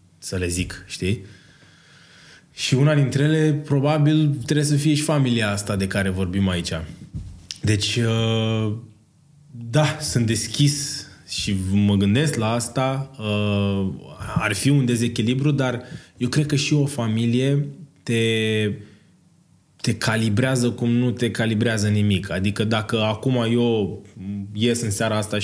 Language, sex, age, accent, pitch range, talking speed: Romanian, male, 20-39, native, 100-120 Hz, 130 wpm